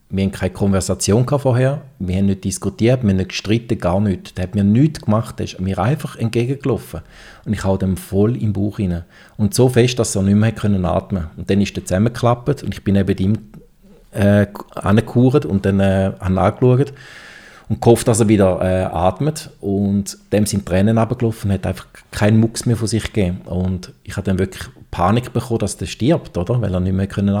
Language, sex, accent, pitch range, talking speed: German, male, Austrian, 100-120 Hz, 215 wpm